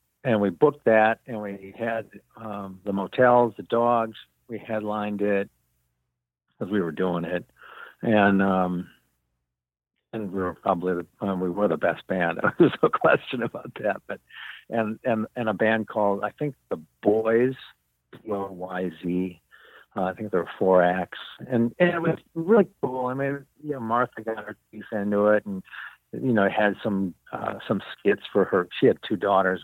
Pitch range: 95-120 Hz